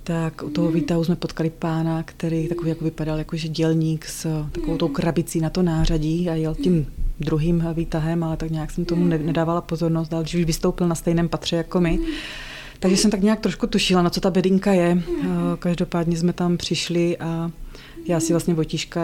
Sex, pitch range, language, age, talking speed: female, 165-185 Hz, Czech, 20-39, 190 wpm